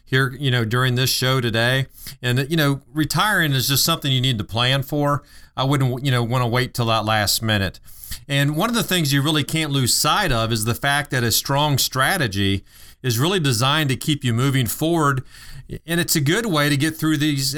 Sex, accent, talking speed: male, American, 220 wpm